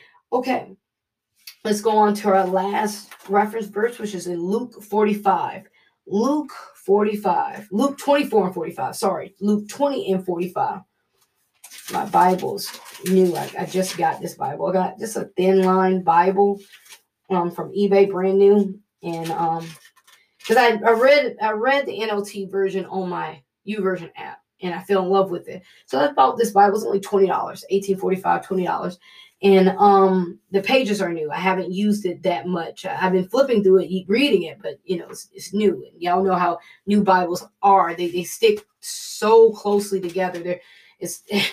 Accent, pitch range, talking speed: American, 180-215 Hz, 170 wpm